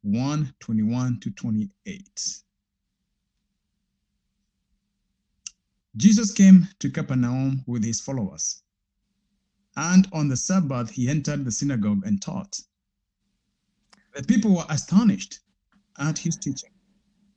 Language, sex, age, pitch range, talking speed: English, male, 60-79, 150-200 Hz, 95 wpm